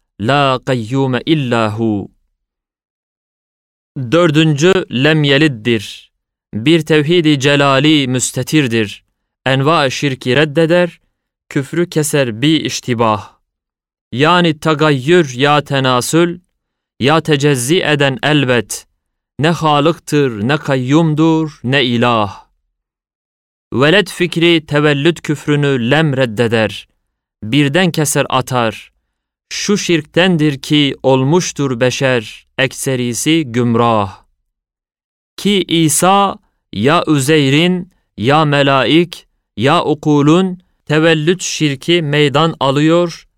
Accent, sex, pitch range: native, male, 120-155 Hz